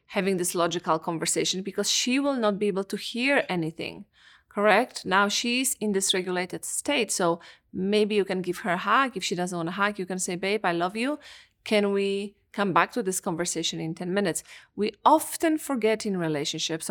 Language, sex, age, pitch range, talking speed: English, female, 30-49, 180-230 Hz, 200 wpm